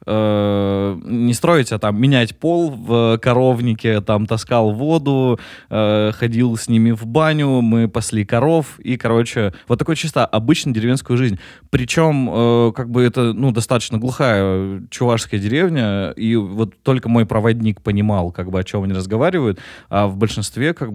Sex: male